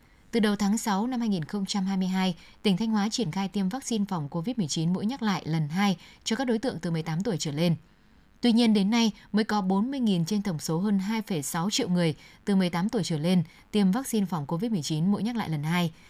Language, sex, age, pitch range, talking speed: Vietnamese, female, 10-29, 175-225 Hz, 215 wpm